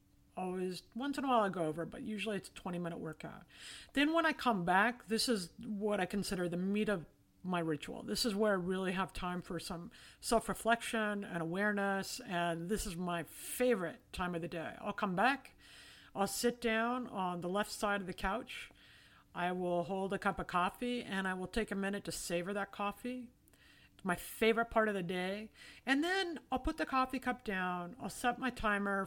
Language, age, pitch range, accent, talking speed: English, 50-69, 180-230 Hz, American, 200 wpm